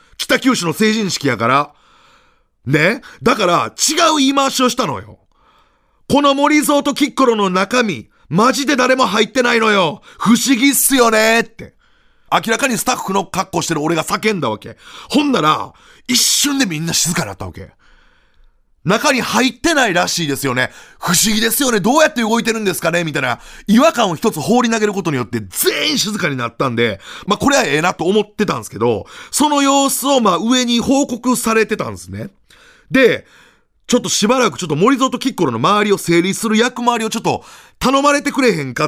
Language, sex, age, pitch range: Japanese, male, 30-49, 150-255 Hz